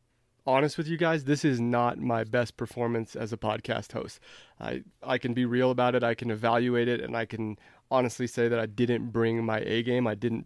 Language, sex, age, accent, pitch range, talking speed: English, male, 30-49, American, 110-125 Hz, 220 wpm